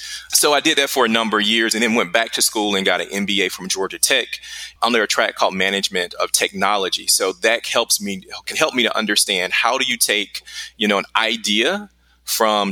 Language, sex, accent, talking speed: English, male, American, 220 wpm